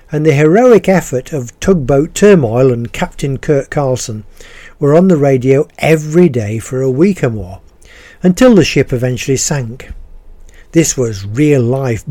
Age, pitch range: 50-69, 125-170 Hz